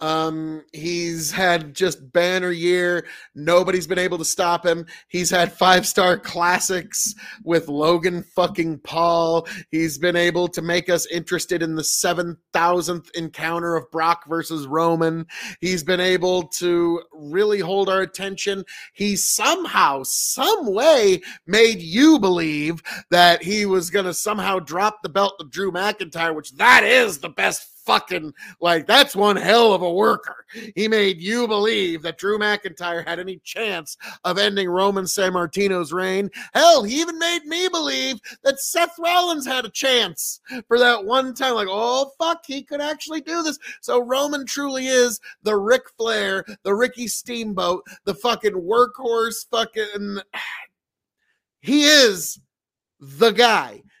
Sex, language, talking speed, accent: male, English, 150 wpm, American